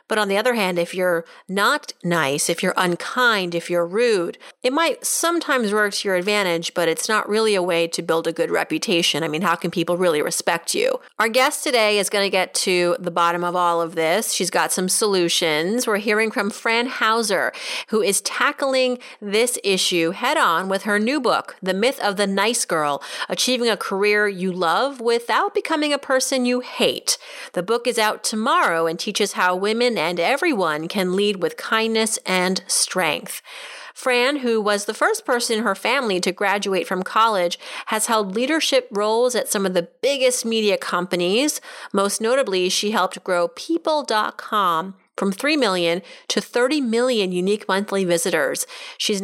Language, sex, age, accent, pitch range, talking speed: English, female, 30-49, American, 180-250 Hz, 180 wpm